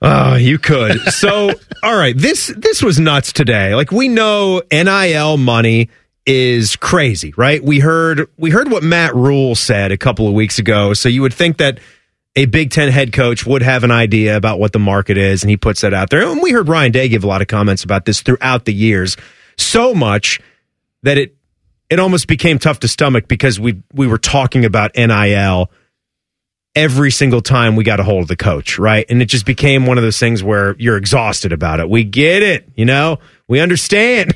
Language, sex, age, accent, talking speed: English, male, 30-49, American, 210 wpm